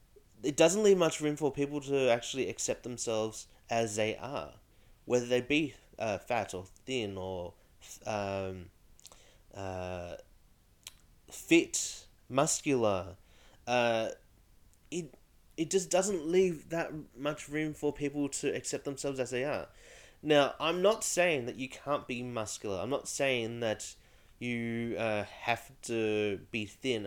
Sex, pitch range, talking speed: male, 105-145 Hz, 135 wpm